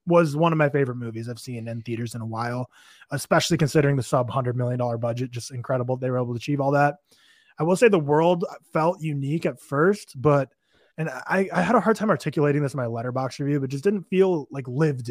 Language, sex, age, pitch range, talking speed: English, male, 20-39, 130-155 Hz, 235 wpm